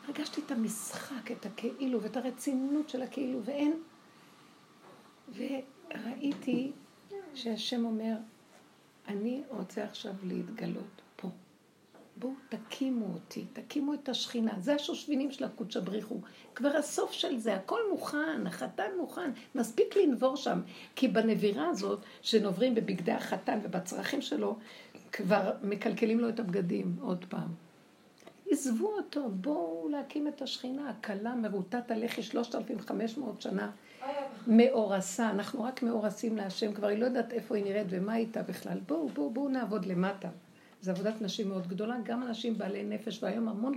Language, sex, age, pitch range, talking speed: Hebrew, female, 60-79, 210-265 Hz, 135 wpm